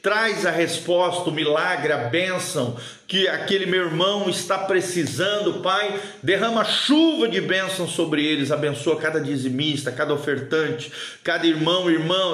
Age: 50-69